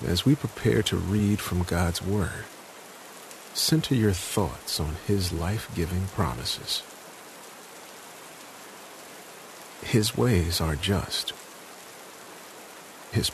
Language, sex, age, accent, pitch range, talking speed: English, male, 50-69, American, 90-110 Hz, 90 wpm